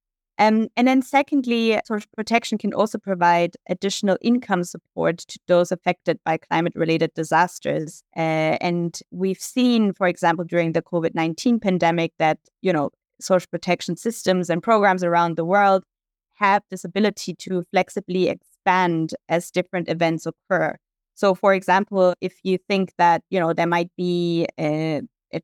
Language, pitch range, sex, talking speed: English, 175-205 Hz, female, 150 wpm